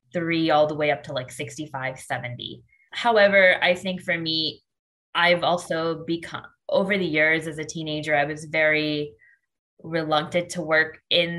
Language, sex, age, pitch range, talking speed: English, female, 20-39, 150-170 Hz, 160 wpm